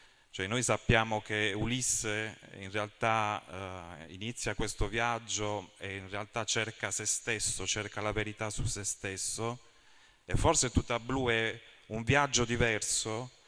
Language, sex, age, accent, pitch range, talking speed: Italian, male, 30-49, native, 100-115 Hz, 140 wpm